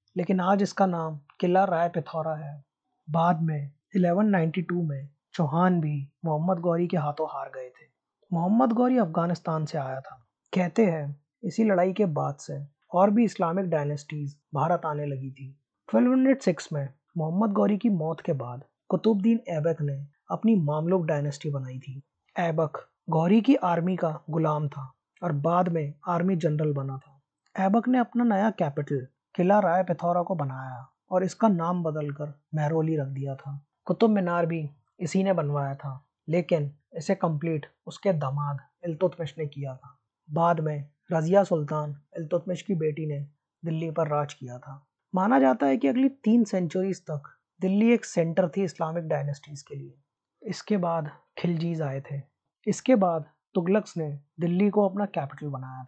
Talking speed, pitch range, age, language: 160 wpm, 145-185 Hz, 20-39, Hindi